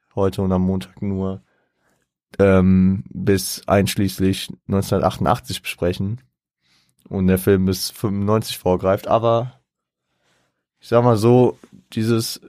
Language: German